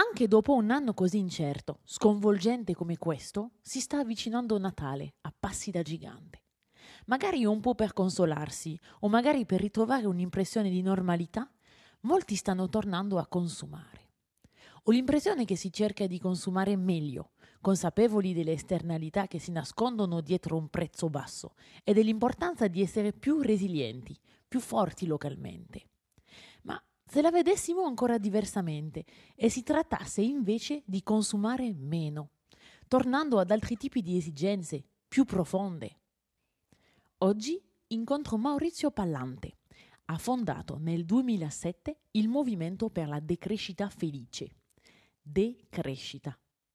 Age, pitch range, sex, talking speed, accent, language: 30-49, 165-230 Hz, female, 125 wpm, native, Italian